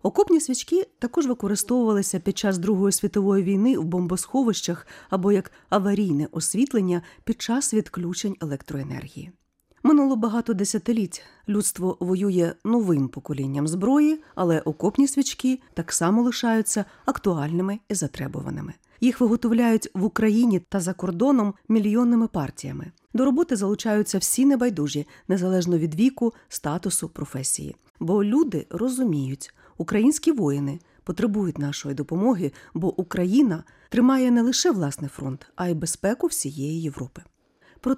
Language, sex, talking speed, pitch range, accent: Russian, female, 120 wpm, 160-235 Hz, native